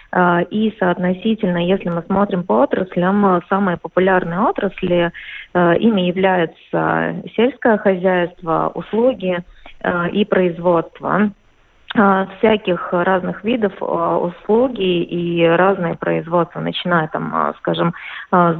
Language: Russian